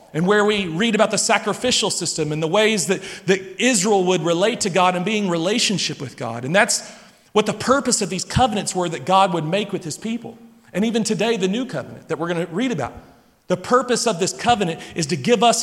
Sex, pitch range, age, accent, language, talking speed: male, 165-215 Hz, 40-59, American, English, 230 wpm